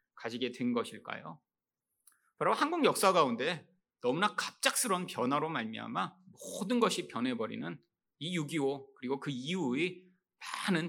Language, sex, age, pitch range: Korean, male, 30-49, 170-250 Hz